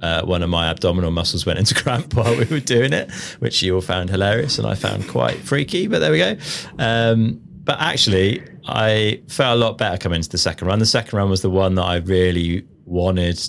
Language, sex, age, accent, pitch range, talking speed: English, male, 30-49, British, 80-100 Hz, 225 wpm